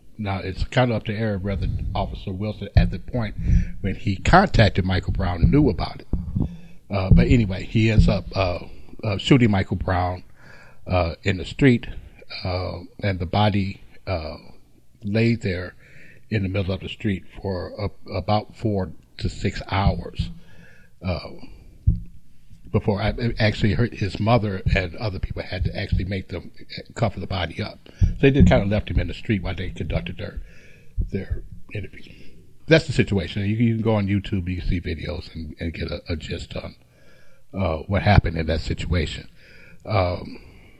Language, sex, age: English, male, 60-79